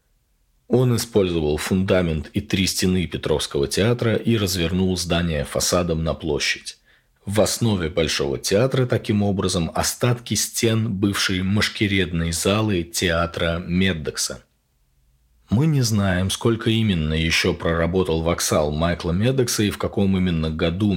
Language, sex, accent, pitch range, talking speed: Russian, male, native, 85-110 Hz, 120 wpm